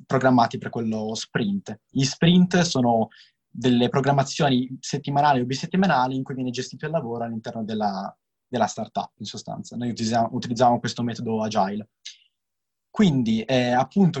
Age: 20-39